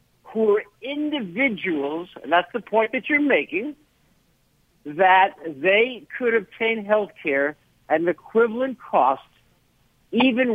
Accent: American